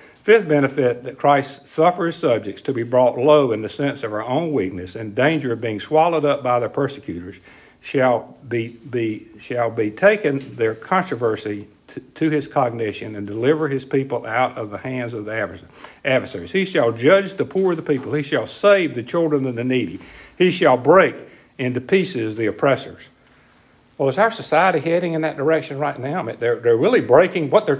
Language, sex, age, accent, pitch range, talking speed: English, male, 60-79, American, 125-170 Hz, 195 wpm